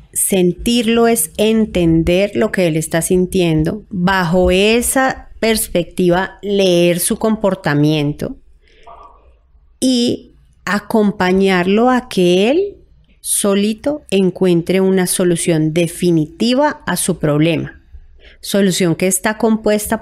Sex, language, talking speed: female, Spanish, 95 wpm